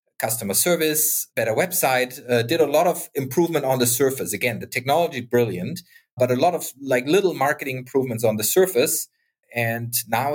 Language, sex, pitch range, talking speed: English, male, 120-155 Hz, 175 wpm